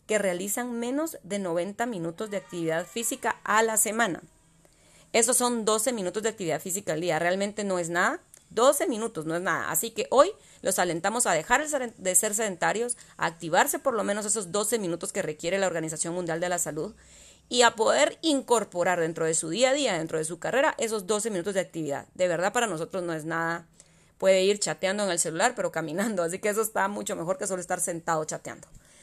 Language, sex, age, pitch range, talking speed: Spanish, female, 30-49, 175-235 Hz, 210 wpm